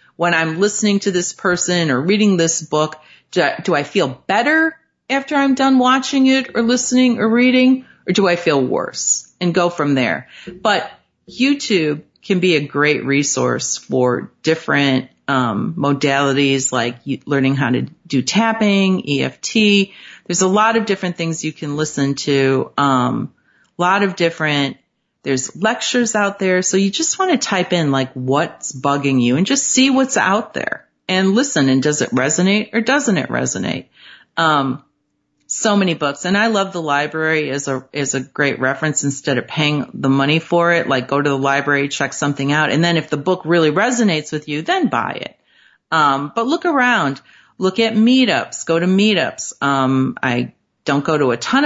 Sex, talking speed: female, 180 wpm